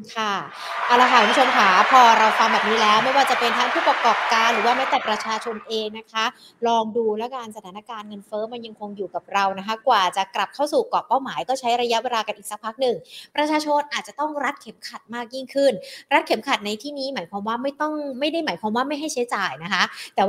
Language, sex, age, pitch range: Thai, female, 20-39, 200-260 Hz